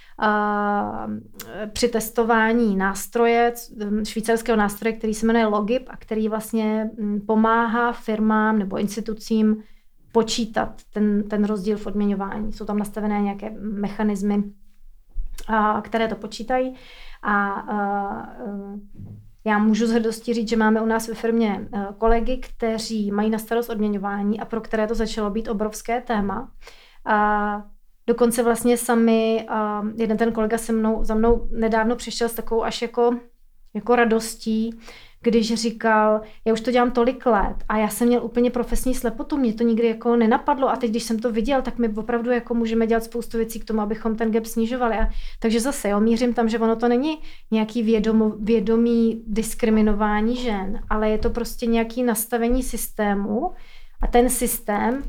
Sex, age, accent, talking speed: female, 30-49, native, 155 wpm